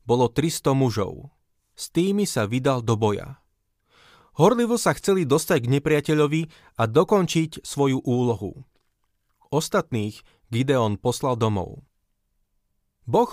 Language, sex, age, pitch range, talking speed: Slovak, male, 30-49, 120-160 Hz, 110 wpm